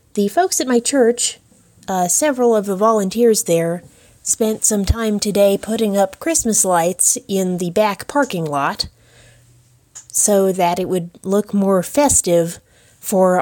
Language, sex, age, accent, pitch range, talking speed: English, female, 30-49, American, 160-205 Hz, 145 wpm